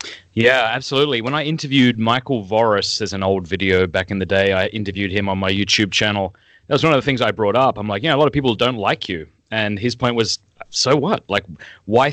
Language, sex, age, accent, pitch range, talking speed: English, male, 30-49, Australian, 100-125 Hz, 240 wpm